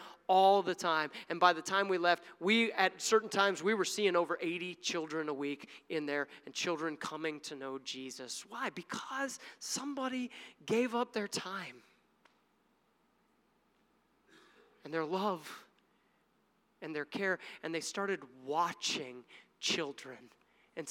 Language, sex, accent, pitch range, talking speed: English, male, American, 150-200 Hz, 140 wpm